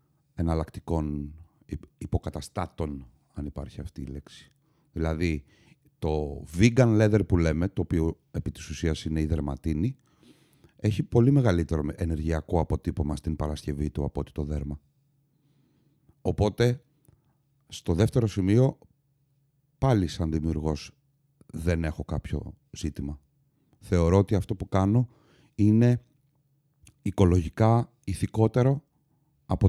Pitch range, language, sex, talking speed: 85-135 Hz, Greek, male, 105 wpm